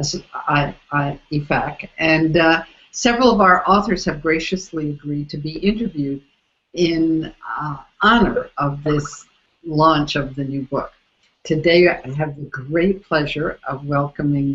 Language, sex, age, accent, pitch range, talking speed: English, female, 60-79, American, 145-180 Hz, 125 wpm